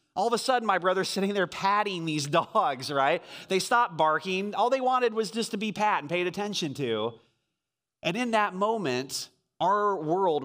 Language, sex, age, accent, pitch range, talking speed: English, male, 30-49, American, 140-195 Hz, 190 wpm